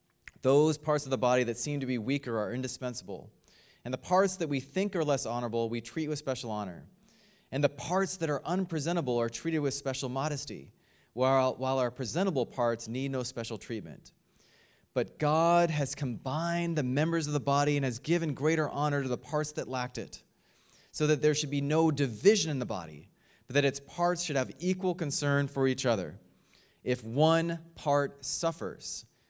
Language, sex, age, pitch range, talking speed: English, male, 30-49, 120-150 Hz, 185 wpm